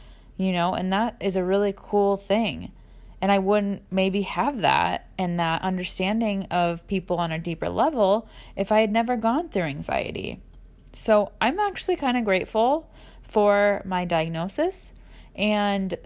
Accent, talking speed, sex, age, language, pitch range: American, 155 wpm, female, 20-39, English, 165-215 Hz